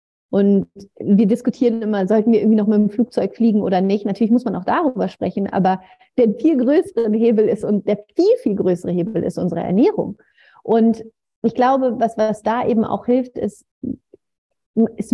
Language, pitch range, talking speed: German, 200-245 Hz, 180 wpm